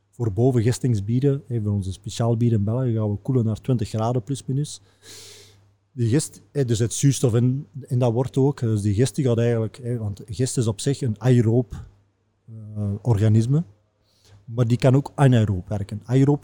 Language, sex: Dutch, male